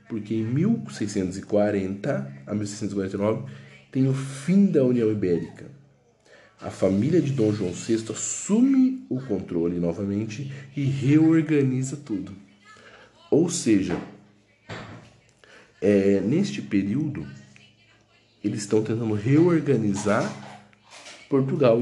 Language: Portuguese